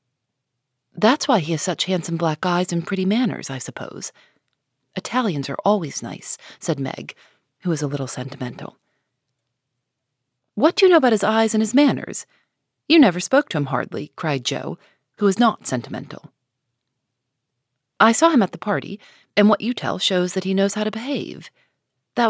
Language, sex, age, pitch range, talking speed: English, female, 40-59, 130-215 Hz, 170 wpm